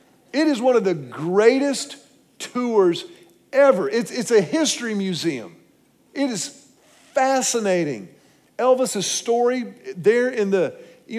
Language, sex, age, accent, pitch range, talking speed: English, male, 50-69, American, 165-235 Hz, 120 wpm